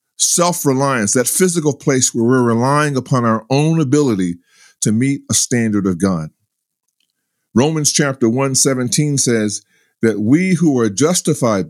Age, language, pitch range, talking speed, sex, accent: 50-69, English, 110-145 Hz, 135 wpm, male, American